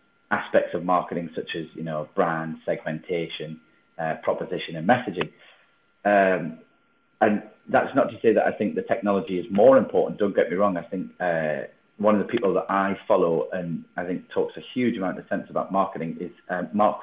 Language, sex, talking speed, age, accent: English, male, 195 wpm, 30-49, British